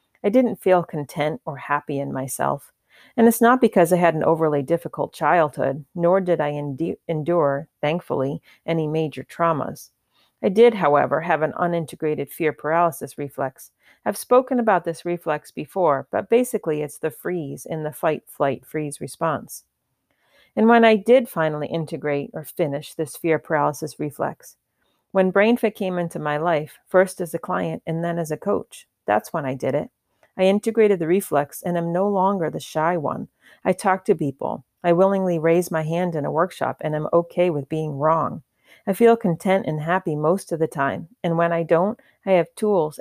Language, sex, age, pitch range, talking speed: English, female, 40-59, 155-185 Hz, 175 wpm